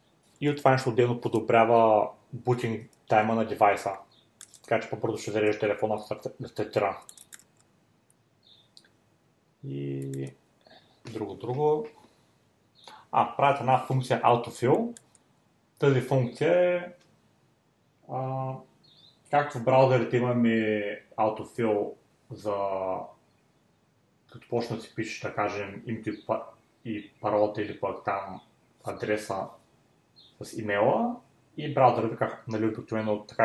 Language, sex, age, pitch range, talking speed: Bulgarian, male, 30-49, 110-130 Hz, 100 wpm